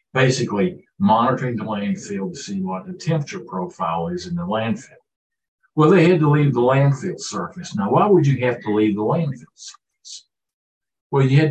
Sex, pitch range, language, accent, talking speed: male, 120-185 Hz, English, American, 180 wpm